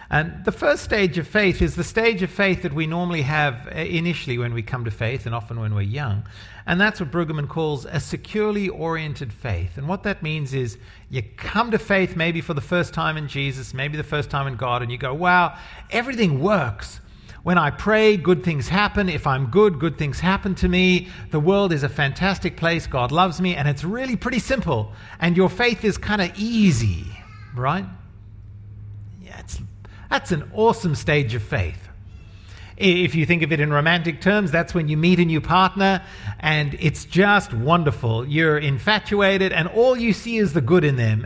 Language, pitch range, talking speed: English, 125-190 Hz, 200 wpm